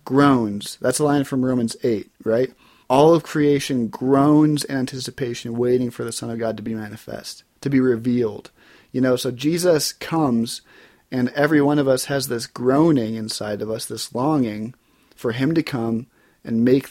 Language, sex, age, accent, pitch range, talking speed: English, male, 30-49, American, 115-140 Hz, 175 wpm